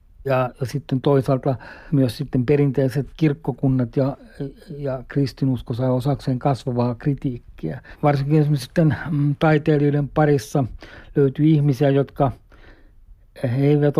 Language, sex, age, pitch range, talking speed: Finnish, male, 60-79, 125-140 Hz, 95 wpm